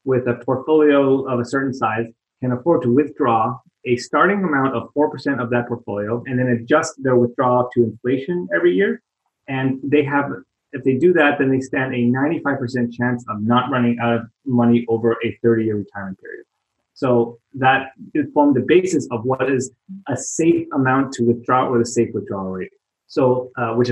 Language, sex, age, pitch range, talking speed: English, male, 30-49, 115-135 Hz, 185 wpm